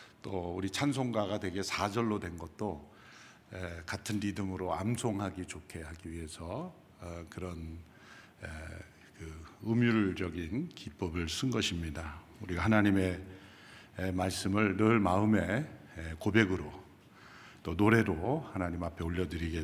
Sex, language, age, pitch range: male, Korean, 50-69, 90-115 Hz